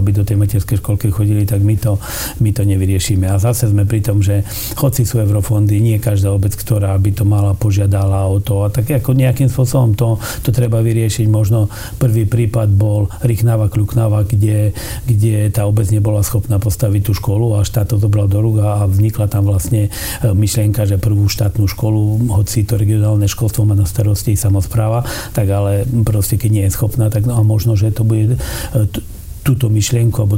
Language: Slovak